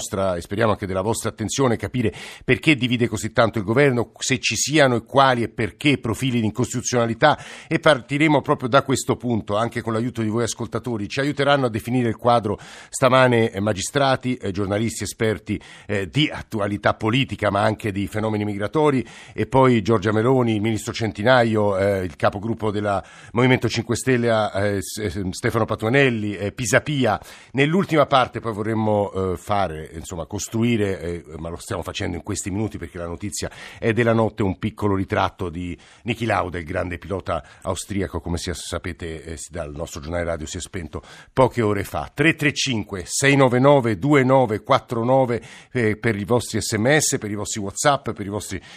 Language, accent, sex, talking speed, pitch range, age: Italian, native, male, 165 wpm, 100-125 Hz, 50-69